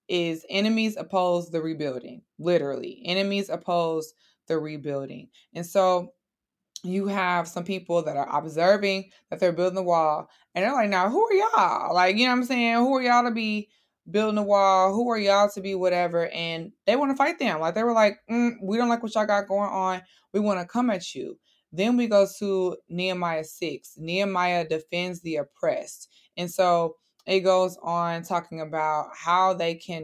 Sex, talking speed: female, 190 wpm